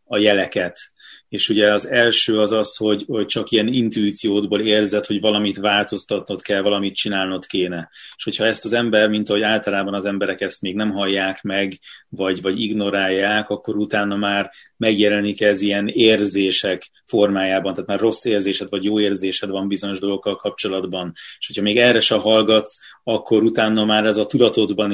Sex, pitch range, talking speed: male, 95-105 Hz, 170 wpm